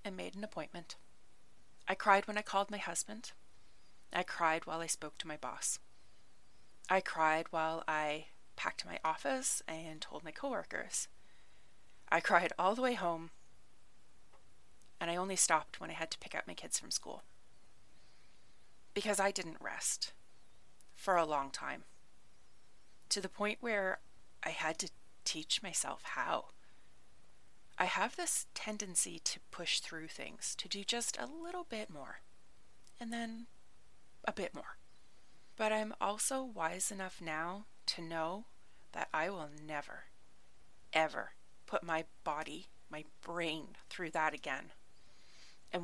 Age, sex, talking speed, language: 30-49, female, 145 wpm, English